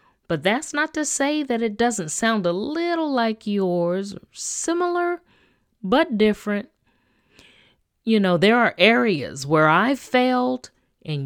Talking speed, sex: 135 wpm, female